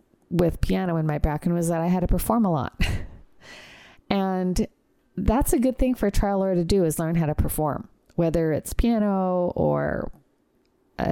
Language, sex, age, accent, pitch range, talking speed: English, female, 40-59, American, 155-195 Hz, 185 wpm